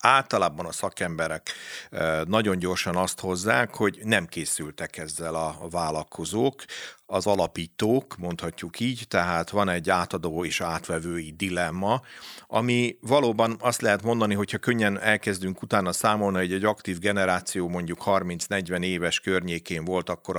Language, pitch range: Hungarian, 85-105 Hz